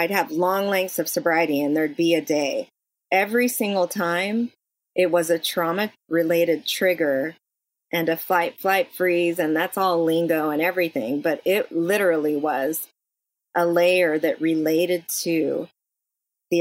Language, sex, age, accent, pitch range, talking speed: English, female, 30-49, American, 165-185 Hz, 150 wpm